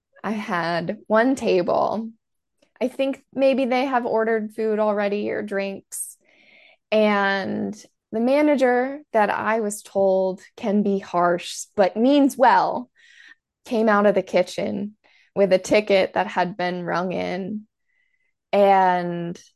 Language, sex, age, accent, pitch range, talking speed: English, female, 20-39, American, 195-255 Hz, 125 wpm